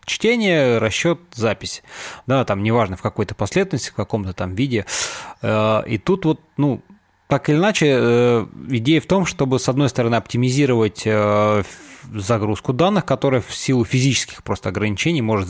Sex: male